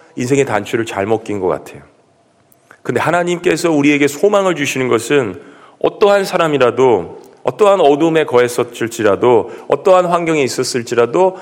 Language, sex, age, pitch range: Korean, male, 40-59, 130-170 Hz